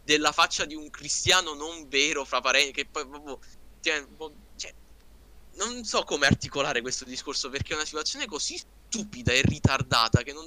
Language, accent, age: Italian, native, 20-39